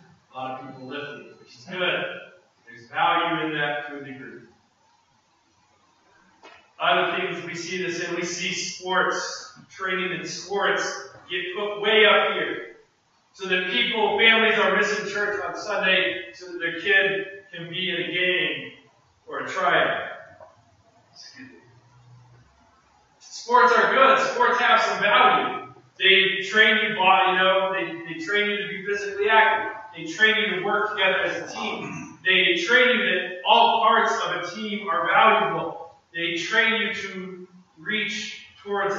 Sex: male